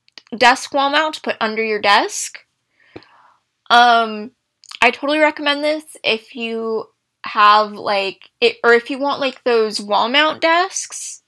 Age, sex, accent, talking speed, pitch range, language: 10-29, female, American, 145 wpm, 210-290 Hz, English